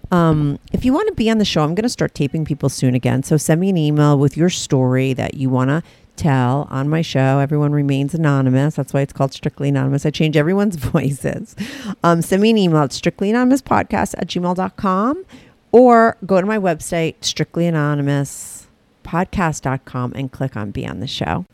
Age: 40-59